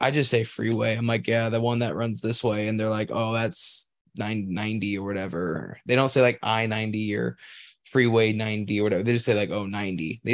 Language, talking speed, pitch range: English, 220 wpm, 110-130 Hz